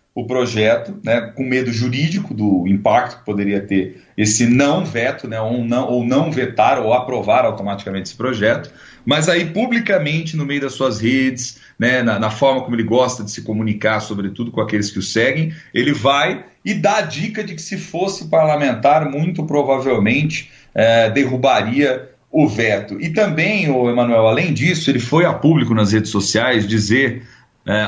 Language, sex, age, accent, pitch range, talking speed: Portuguese, male, 40-59, Brazilian, 110-145 Hz, 170 wpm